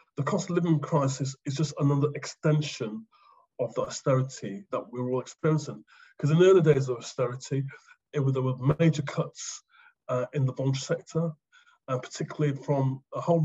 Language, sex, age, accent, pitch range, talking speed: English, male, 30-49, British, 130-155 Hz, 175 wpm